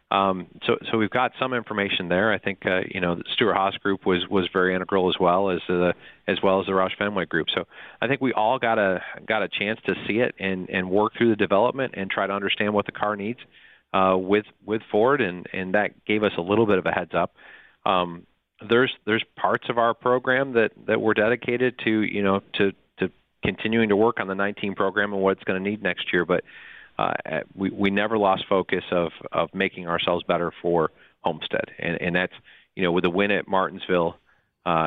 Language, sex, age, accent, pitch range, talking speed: English, male, 40-59, American, 90-105 Hz, 225 wpm